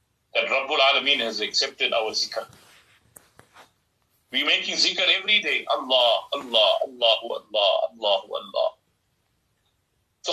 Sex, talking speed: male, 115 wpm